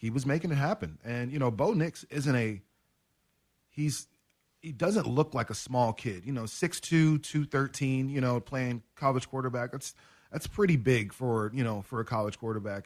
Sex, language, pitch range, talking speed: male, English, 115-140 Hz, 195 wpm